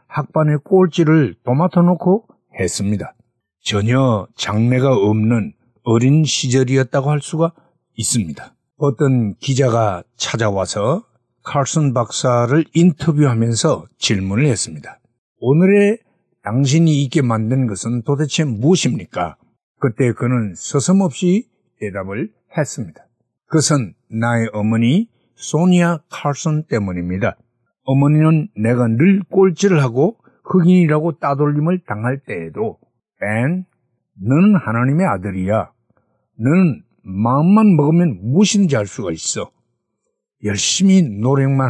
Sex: male